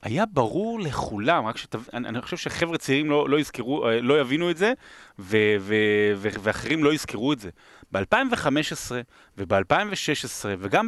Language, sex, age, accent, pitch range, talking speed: Hebrew, male, 30-49, native, 110-180 Hz, 145 wpm